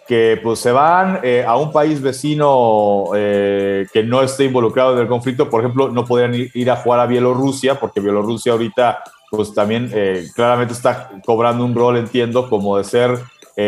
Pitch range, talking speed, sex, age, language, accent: 110-140 Hz, 180 wpm, male, 30-49, Spanish, Mexican